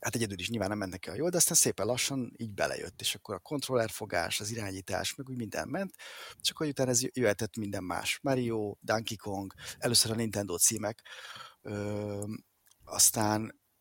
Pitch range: 105-130 Hz